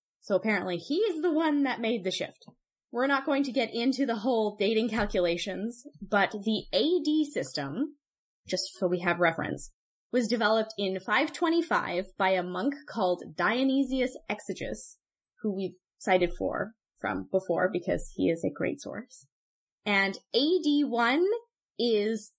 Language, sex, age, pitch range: English, female, 10-29, 190-265 Hz